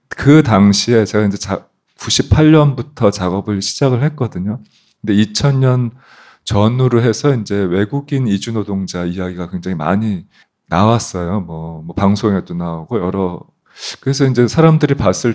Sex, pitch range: male, 90-125 Hz